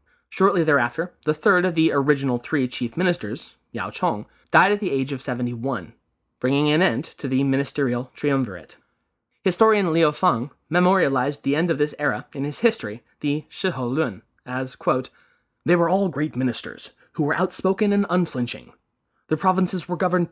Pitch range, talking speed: 135-185 Hz, 165 wpm